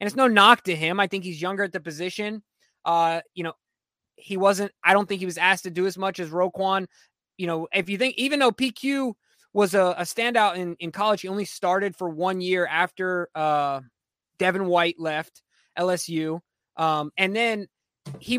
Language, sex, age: English, male, 20-39